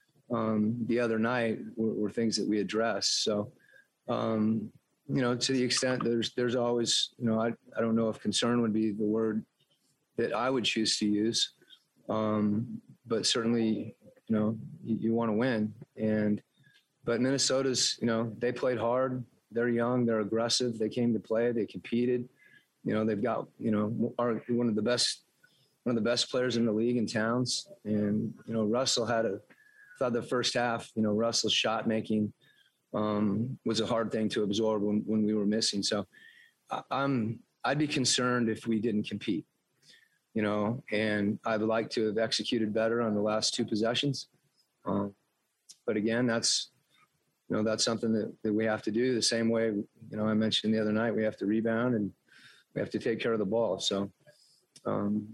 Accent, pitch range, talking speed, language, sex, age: American, 110-120 Hz, 195 wpm, English, male, 30-49